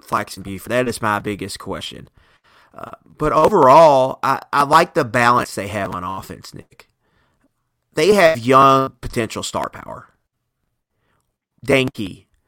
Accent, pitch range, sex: American, 100-125 Hz, male